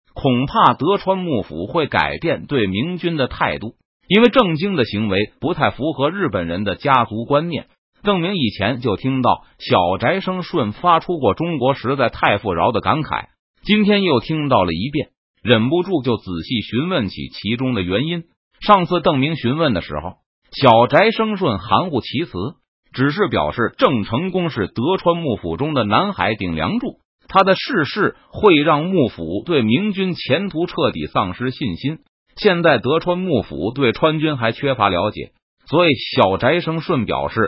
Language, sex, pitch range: Chinese, male, 120-180 Hz